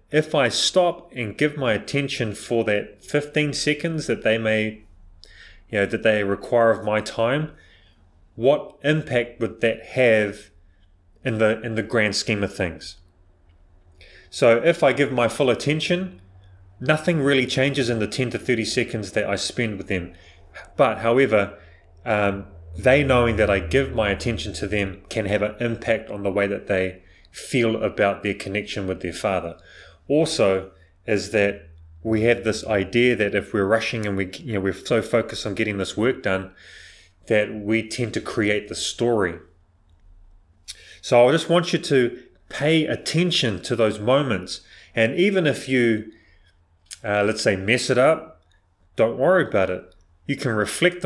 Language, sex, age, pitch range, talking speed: English, male, 30-49, 95-120 Hz, 165 wpm